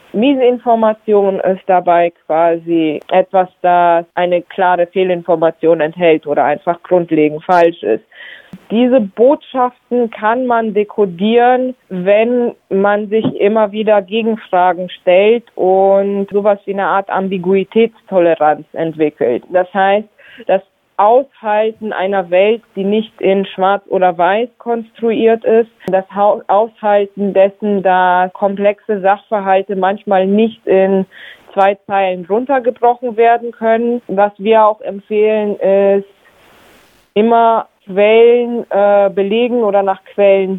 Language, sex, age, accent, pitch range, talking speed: German, female, 20-39, German, 185-220 Hz, 110 wpm